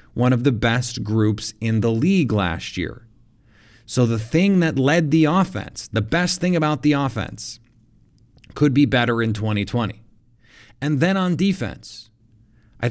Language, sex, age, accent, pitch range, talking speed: English, male, 30-49, American, 110-125 Hz, 155 wpm